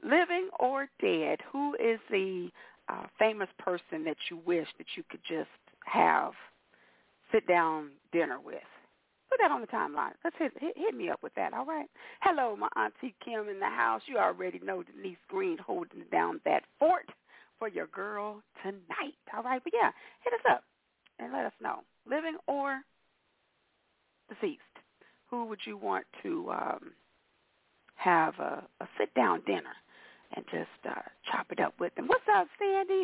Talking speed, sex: 165 wpm, female